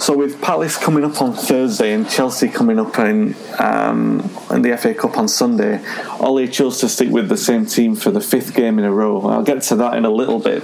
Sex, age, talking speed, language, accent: male, 30-49, 235 wpm, English, British